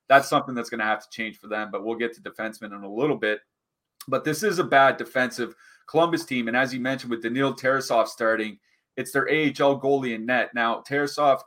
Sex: male